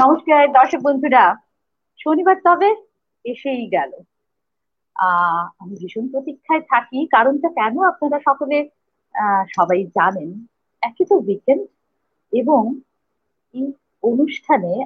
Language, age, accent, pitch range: Bengali, 50-69, native, 230-315 Hz